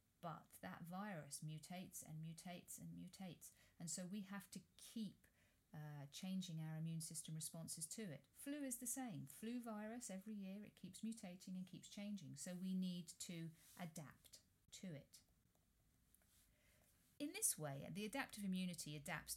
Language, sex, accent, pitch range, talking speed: English, female, British, 155-195 Hz, 155 wpm